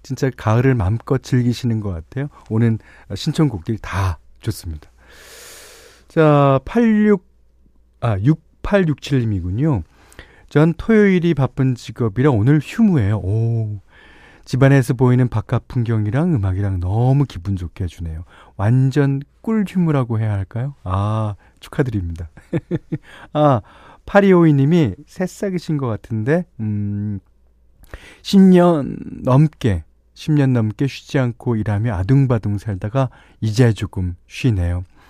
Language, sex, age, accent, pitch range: Korean, male, 40-59, native, 95-145 Hz